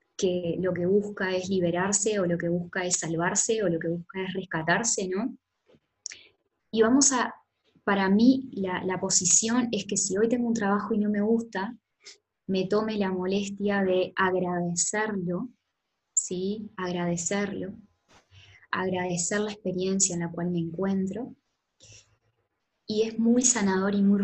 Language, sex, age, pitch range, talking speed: Spanish, female, 20-39, 180-225 Hz, 150 wpm